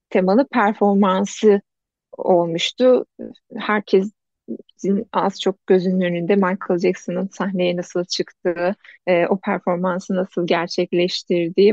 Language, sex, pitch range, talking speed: Turkish, female, 190-235 Hz, 90 wpm